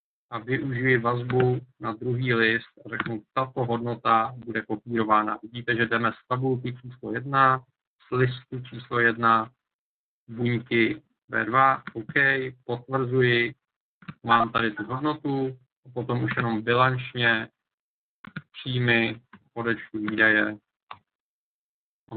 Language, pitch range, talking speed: Czech, 115-135 Hz, 105 wpm